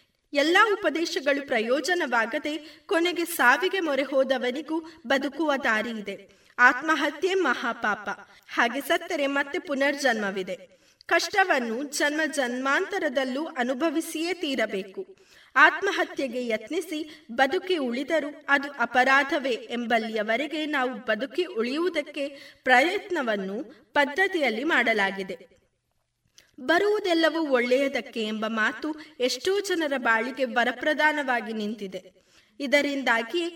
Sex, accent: female, native